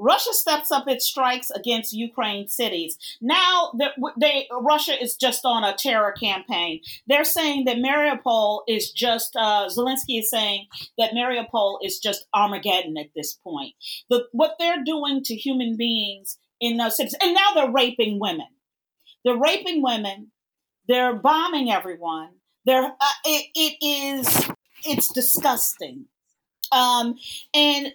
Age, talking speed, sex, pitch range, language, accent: 40-59, 140 wpm, female, 210-280 Hz, English, American